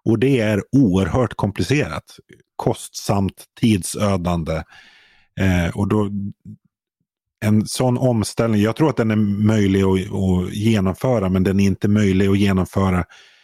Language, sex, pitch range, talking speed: Swedish, male, 95-110 Hz, 125 wpm